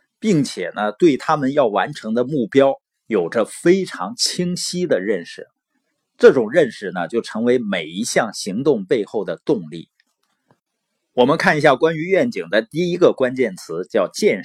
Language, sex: Chinese, male